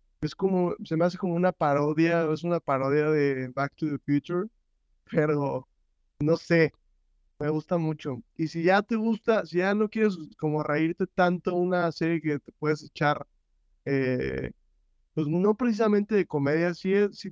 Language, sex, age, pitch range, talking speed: Spanish, male, 30-49, 135-160 Hz, 165 wpm